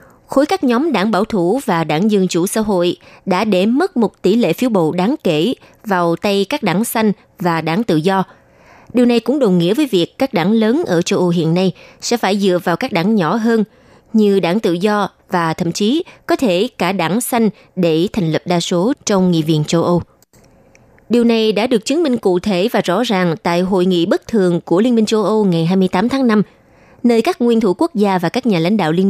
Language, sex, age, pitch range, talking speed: Vietnamese, female, 20-39, 175-230 Hz, 235 wpm